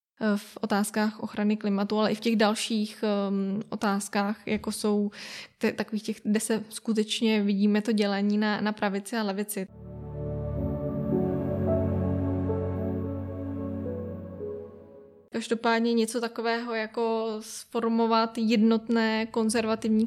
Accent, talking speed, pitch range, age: native, 100 wpm, 205-225 Hz, 10-29